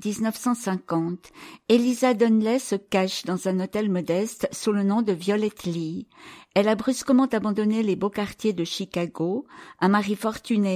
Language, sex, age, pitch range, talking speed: English, female, 50-69, 190-230 Hz, 150 wpm